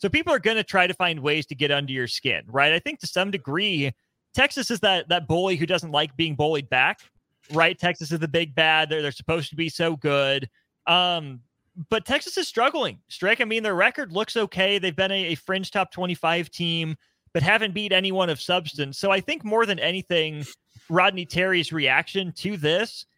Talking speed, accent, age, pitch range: 210 wpm, American, 30-49, 155-200 Hz